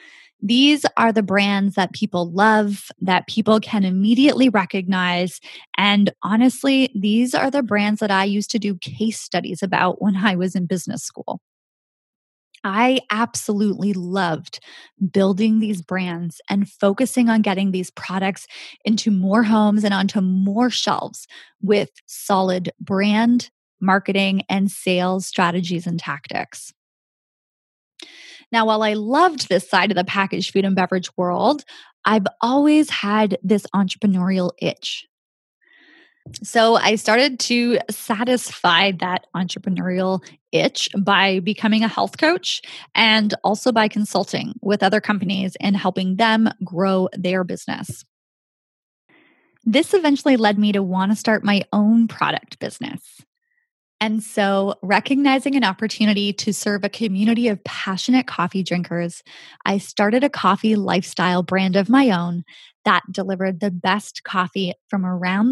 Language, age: English, 20-39